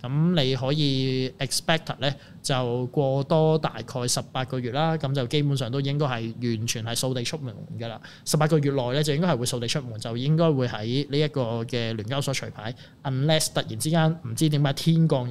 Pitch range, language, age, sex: 120-150 Hz, Chinese, 20-39, male